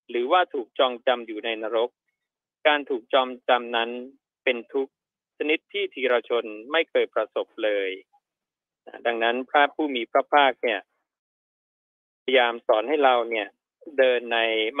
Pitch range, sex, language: 115-160 Hz, male, Thai